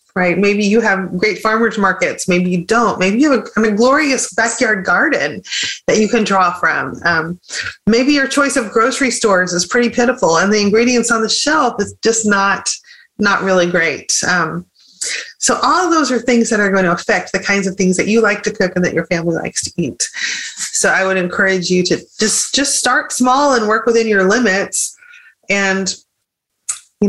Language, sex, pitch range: English, female, 190-245 Hz